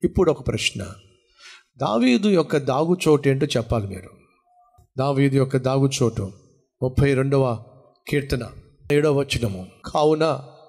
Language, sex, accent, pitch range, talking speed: Telugu, male, native, 115-155 Hz, 100 wpm